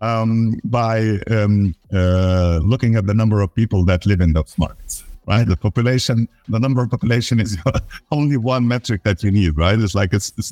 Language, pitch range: English, 90-120 Hz